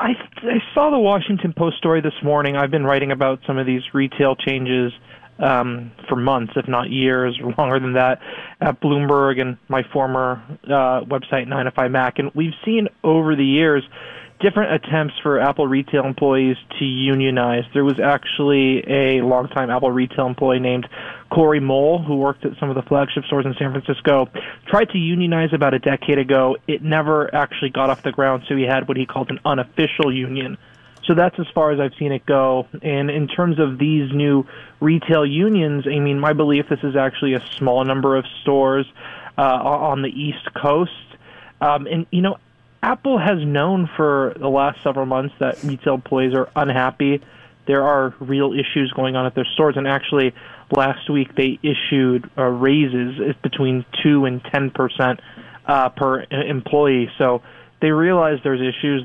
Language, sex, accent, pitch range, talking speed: English, male, American, 130-145 Hz, 180 wpm